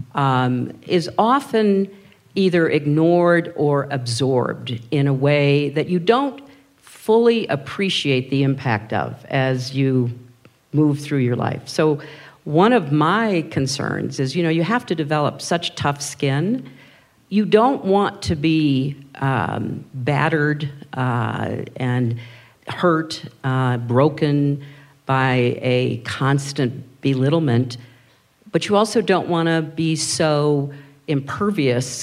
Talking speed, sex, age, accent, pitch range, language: 120 wpm, female, 50-69, American, 125-160 Hz, English